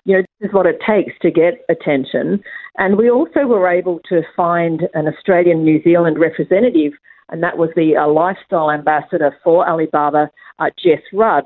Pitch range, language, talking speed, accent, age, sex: 150-185 Hz, English, 180 wpm, Australian, 50-69, female